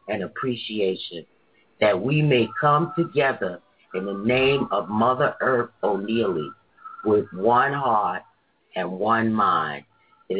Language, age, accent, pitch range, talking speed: English, 40-59, American, 115-170 Hz, 120 wpm